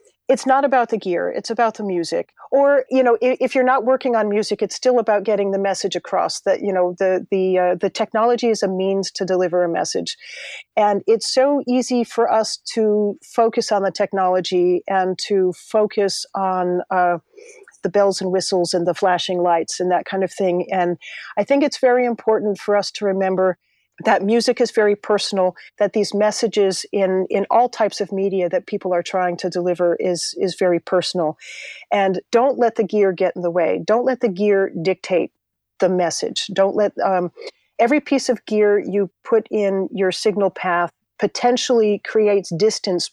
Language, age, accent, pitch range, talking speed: English, 40-59, American, 185-230 Hz, 190 wpm